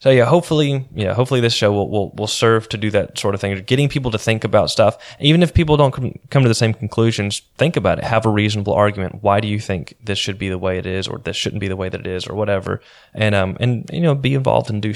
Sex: male